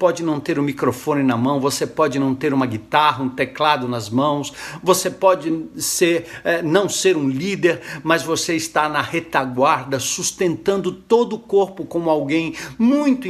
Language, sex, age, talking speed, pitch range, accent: Portuguese, male, 60-79, 165 wpm, 150-185 Hz, Brazilian